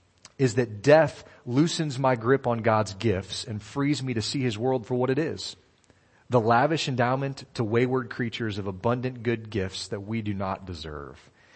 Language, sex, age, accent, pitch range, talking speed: English, male, 30-49, American, 105-130 Hz, 180 wpm